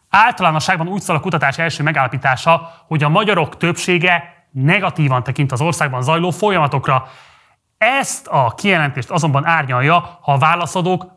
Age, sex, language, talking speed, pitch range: 30-49, male, Hungarian, 135 wpm, 135-175 Hz